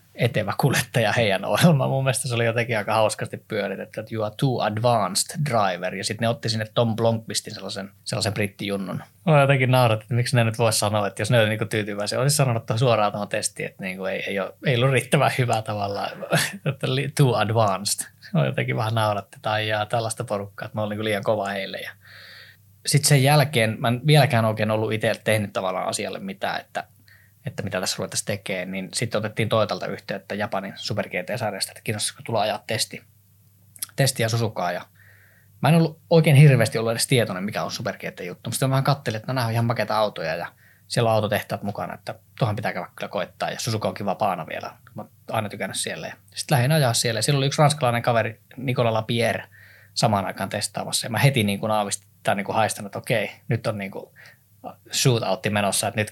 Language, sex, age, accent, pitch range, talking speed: Finnish, male, 20-39, native, 105-125 Hz, 195 wpm